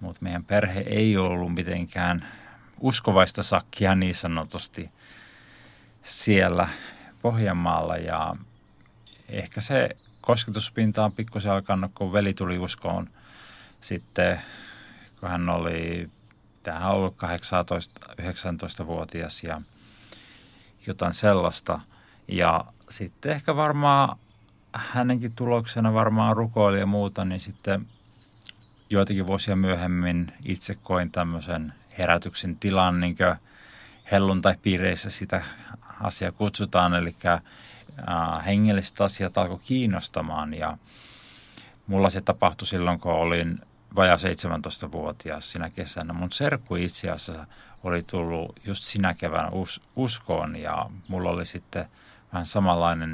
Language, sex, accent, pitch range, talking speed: Finnish, male, native, 90-105 Hz, 105 wpm